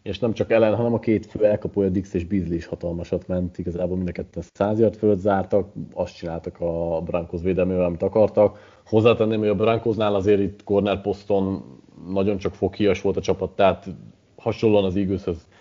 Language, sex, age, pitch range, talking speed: Hungarian, male, 30-49, 95-110 Hz, 175 wpm